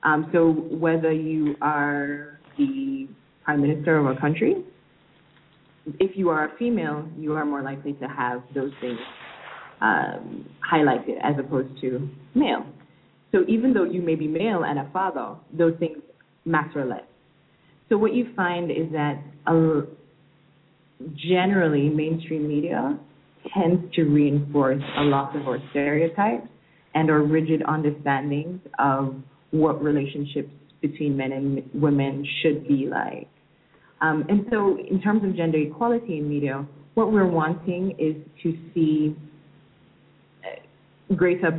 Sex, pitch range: female, 145-170 Hz